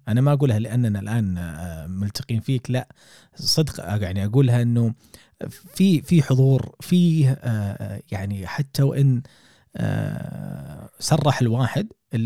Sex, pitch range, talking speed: male, 105-135 Hz, 105 wpm